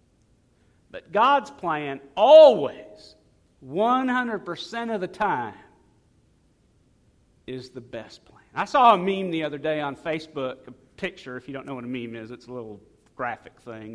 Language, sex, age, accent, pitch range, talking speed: English, male, 50-69, American, 125-190 Hz, 155 wpm